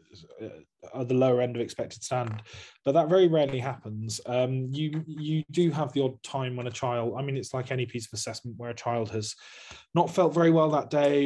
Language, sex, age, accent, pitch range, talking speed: English, male, 20-39, British, 125-150 Hz, 220 wpm